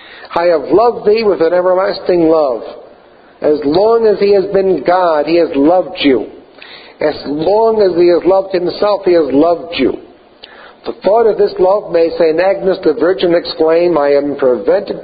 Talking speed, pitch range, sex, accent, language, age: 175 wpm, 170-230 Hz, male, American, English, 50-69